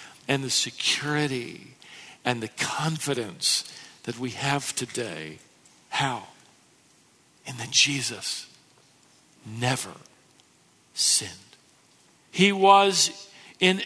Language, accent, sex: English, American, male